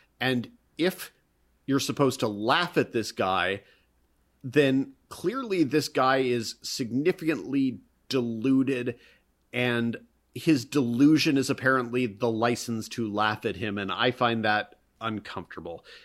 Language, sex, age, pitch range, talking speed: English, male, 30-49, 110-135 Hz, 120 wpm